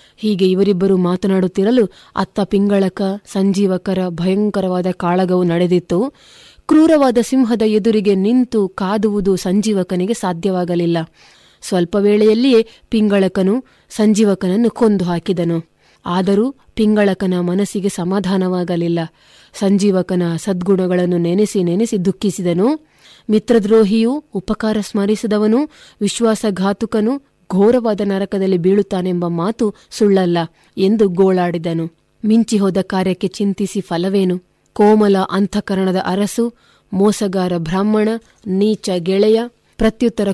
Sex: female